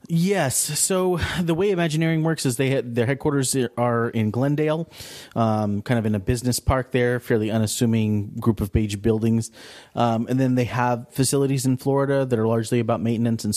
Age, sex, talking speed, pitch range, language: 30-49, male, 185 wpm, 105-130 Hz, English